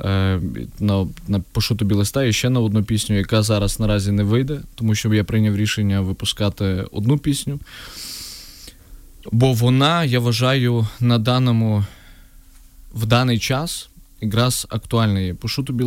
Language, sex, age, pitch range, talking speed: Ukrainian, male, 20-39, 105-125 Hz, 140 wpm